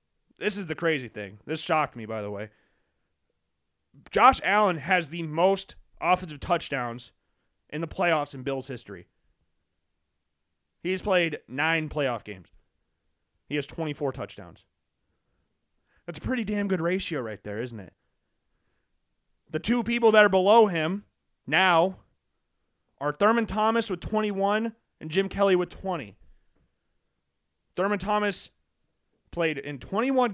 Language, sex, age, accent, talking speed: English, male, 30-49, American, 130 wpm